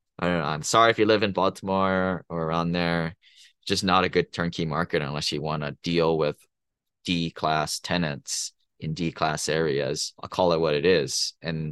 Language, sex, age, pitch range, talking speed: English, male, 20-39, 85-105 Hz, 190 wpm